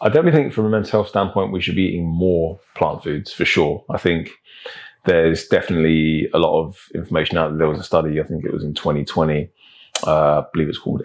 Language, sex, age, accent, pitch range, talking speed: English, male, 20-39, British, 80-90 Hz, 230 wpm